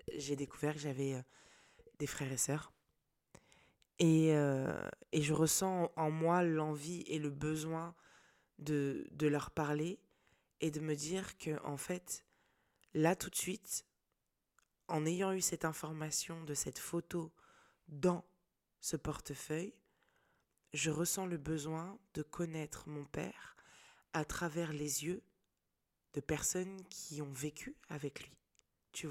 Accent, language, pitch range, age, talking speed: French, French, 150-185 Hz, 20-39, 135 wpm